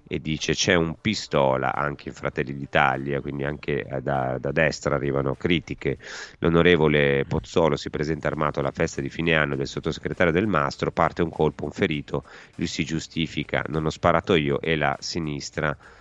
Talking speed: 170 wpm